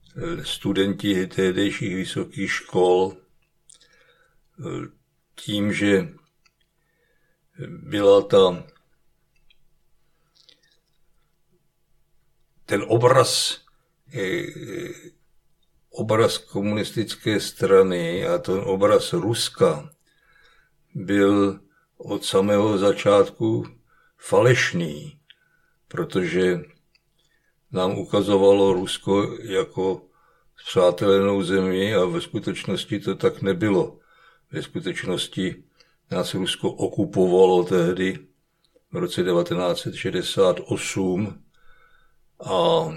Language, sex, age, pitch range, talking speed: Czech, male, 60-79, 100-165 Hz, 65 wpm